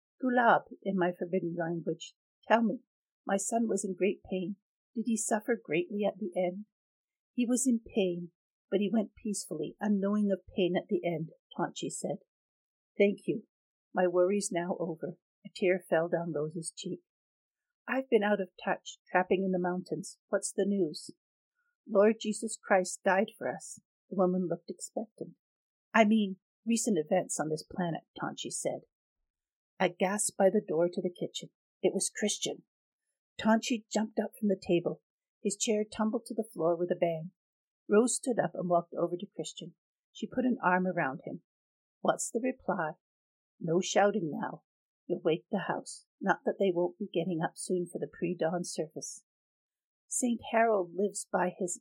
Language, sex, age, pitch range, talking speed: English, female, 50-69, 175-220 Hz, 170 wpm